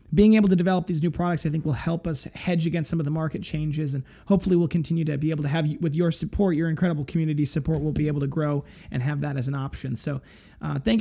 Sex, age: male, 20-39